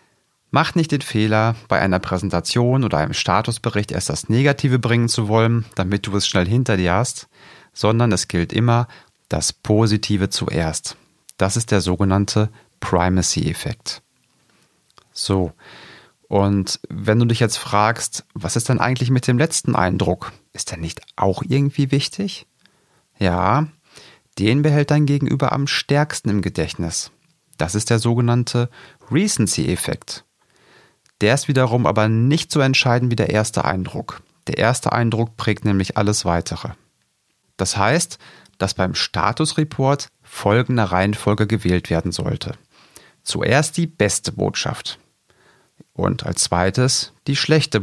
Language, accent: German, German